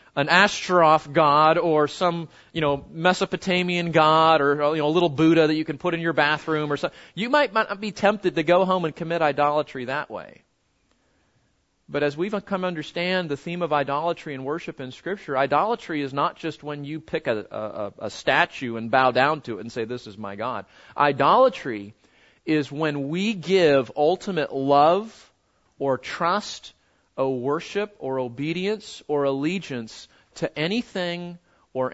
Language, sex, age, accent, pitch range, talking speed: English, male, 40-59, American, 135-175 Hz, 170 wpm